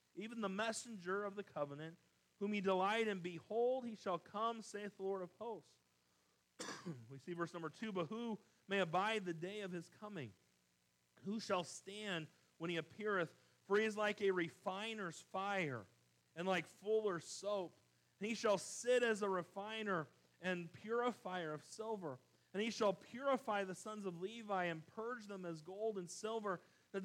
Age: 40-59